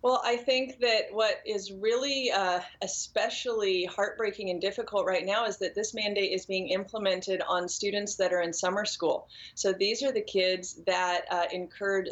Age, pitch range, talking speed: 30-49, 175-205 Hz, 180 wpm